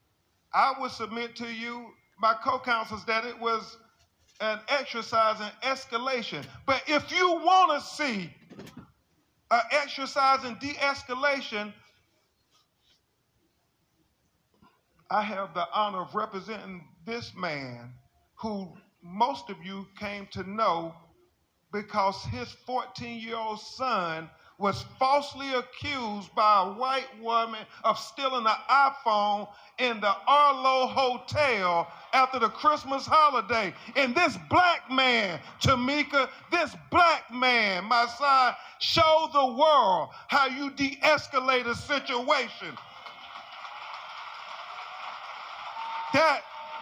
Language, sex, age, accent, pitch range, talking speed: English, male, 50-69, American, 215-275 Hz, 105 wpm